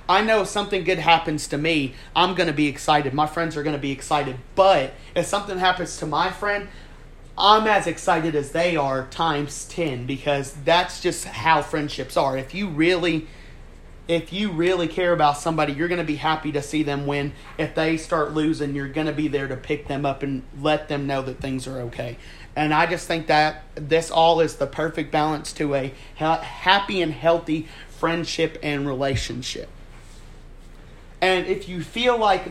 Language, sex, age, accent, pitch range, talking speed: English, male, 40-59, American, 140-165 Hz, 190 wpm